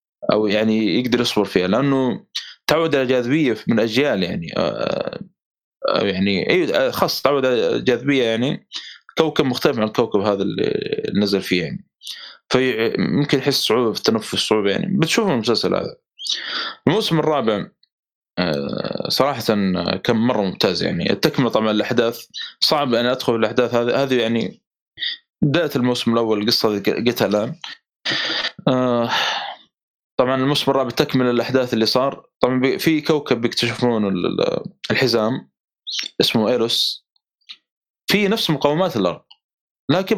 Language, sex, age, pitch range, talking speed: Arabic, male, 20-39, 110-140 Hz, 125 wpm